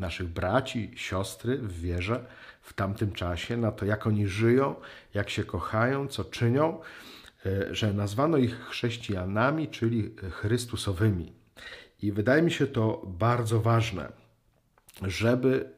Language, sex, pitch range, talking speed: Polish, male, 95-120 Hz, 120 wpm